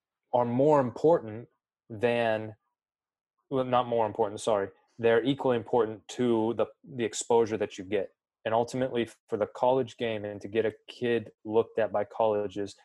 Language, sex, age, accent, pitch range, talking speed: English, male, 20-39, American, 105-120 Hz, 160 wpm